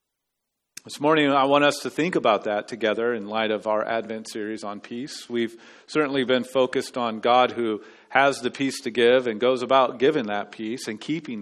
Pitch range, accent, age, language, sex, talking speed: 115-155 Hz, American, 40-59, English, male, 200 wpm